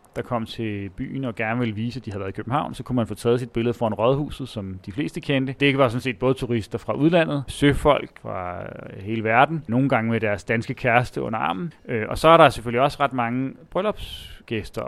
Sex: male